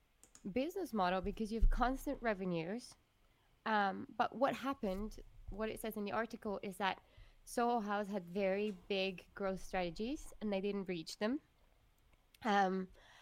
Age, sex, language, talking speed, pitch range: 20-39, female, English, 145 wpm, 185-225 Hz